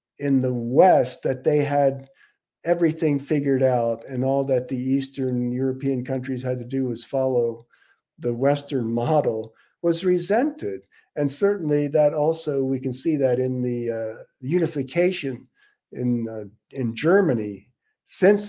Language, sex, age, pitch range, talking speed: English, male, 50-69, 120-145 Hz, 140 wpm